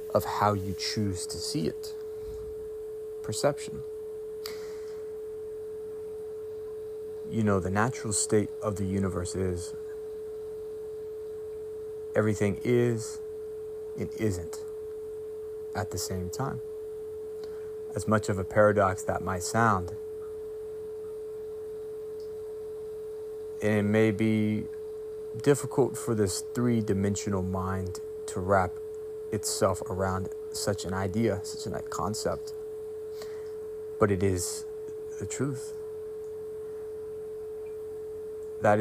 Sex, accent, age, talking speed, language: male, American, 30-49, 90 wpm, English